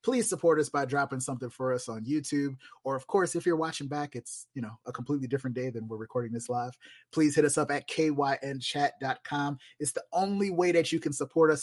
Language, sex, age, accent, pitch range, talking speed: English, male, 30-49, American, 130-170 Hz, 225 wpm